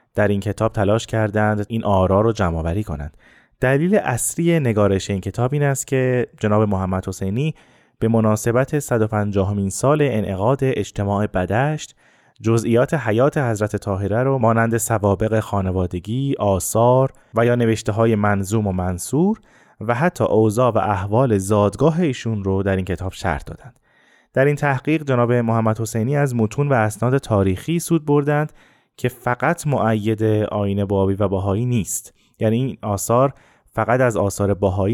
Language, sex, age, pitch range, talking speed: Persian, male, 20-39, 100-130 Hz, 145 wpm